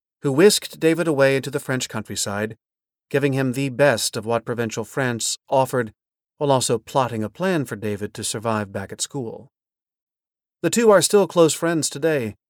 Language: English